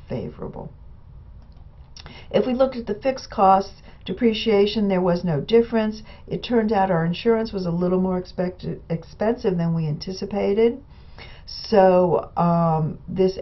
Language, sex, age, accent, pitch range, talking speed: English, female, 50-69, American, 165-200 Hz, 135 wpm